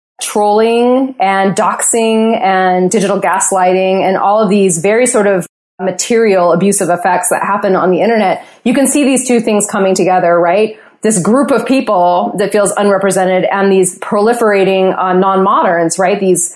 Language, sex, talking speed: English, female, 160 wpm